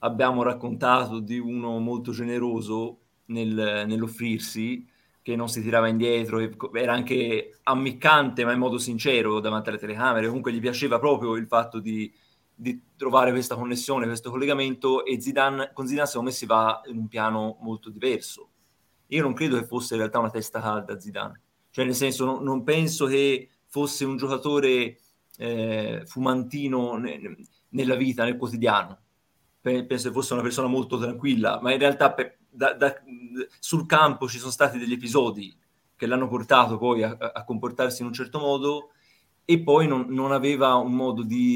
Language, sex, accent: Italian, male, native